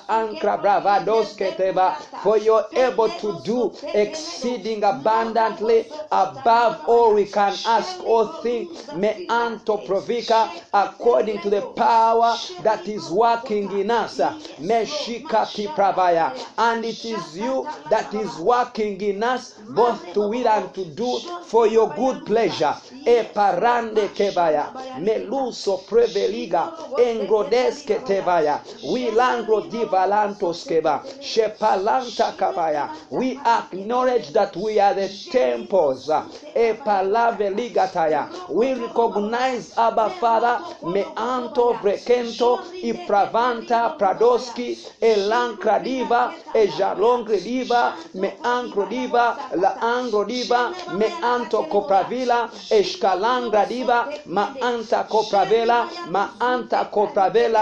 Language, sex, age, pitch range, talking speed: English, male, 50-69, 205-245 Hz, 95 wpm